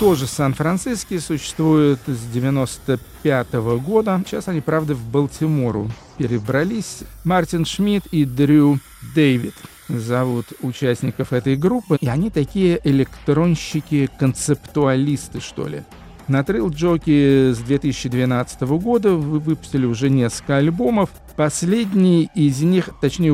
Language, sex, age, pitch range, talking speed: Russian, male, 50-69, 125-160 Hz, 105 wpm